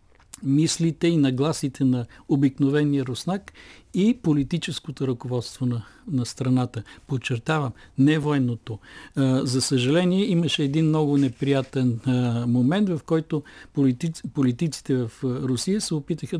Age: 50-69